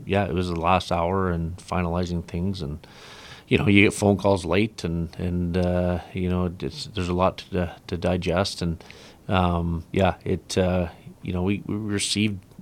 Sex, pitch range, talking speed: male, 90-100 Hz, 185 wpm